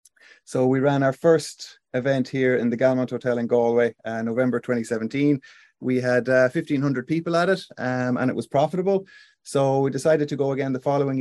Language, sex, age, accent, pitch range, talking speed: English, male, 30-49, Irish, 115-135 Hz, 195 wpm